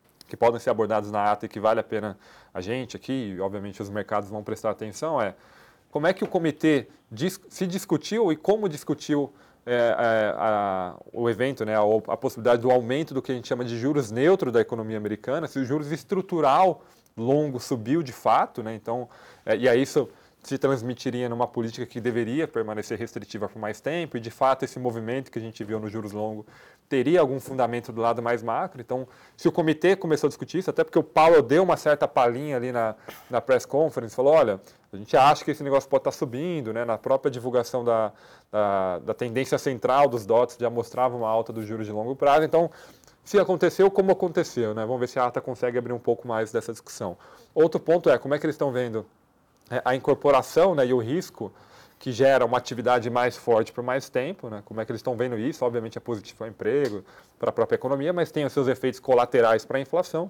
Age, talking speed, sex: 20-39, 220 wpm, male